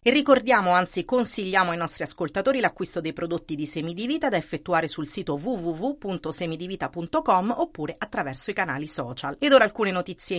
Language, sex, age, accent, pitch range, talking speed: Italian, female, 40-59, native, 165-220 Hz, 150 wpm